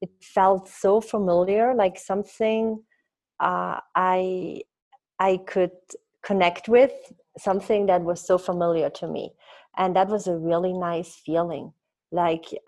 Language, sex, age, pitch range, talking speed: English, female, 30-49, 170-195 Hz, 130 wpm